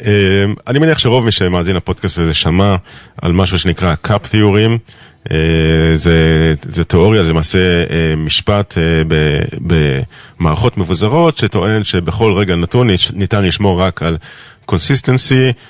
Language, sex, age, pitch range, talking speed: Hebrew, male, 40-59, 90-120 Hz, 130 wpm